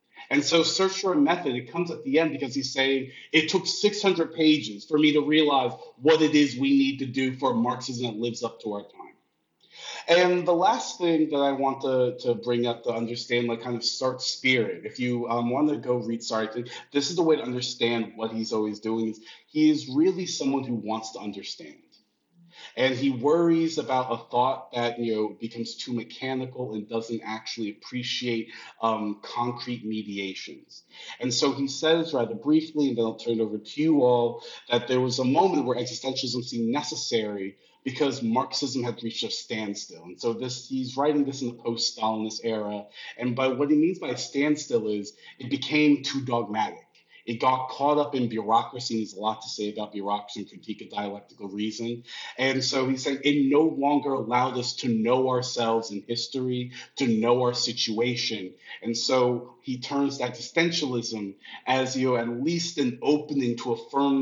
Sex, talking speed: male, 190 wpm